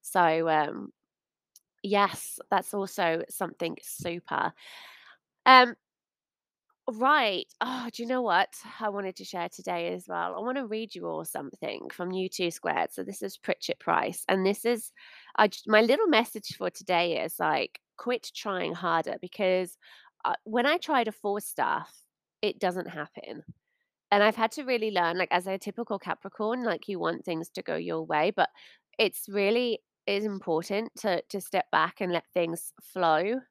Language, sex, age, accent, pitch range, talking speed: English, female, 20-39, British, 175-220 Hz, 170 wpm